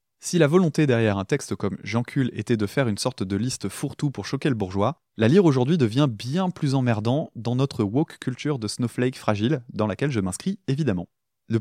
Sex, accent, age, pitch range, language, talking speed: male, French, 20-39, 110-145 Hz, French, 205 wpm